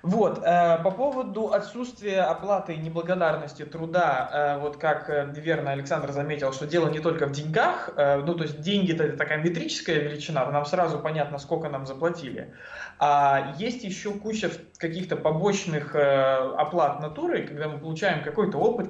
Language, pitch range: Russian, 145-190 Hz